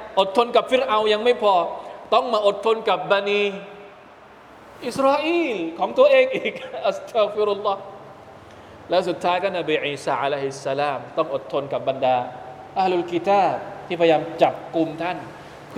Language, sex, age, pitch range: Thai, male, 20-39, 155-230 Hz